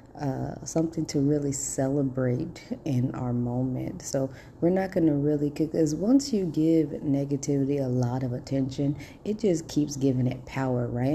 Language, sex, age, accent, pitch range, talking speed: English, female, 30-49, American, 135-160 Hz, 160 wpm